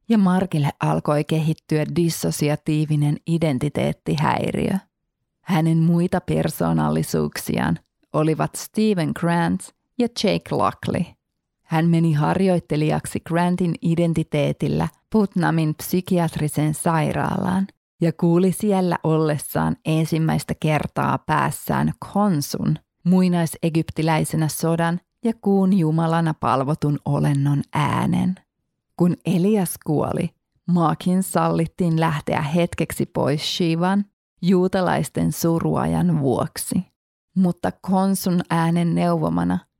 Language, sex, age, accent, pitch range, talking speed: Finnish, female, 30-49, native, 150-180 Hz, 85 wpm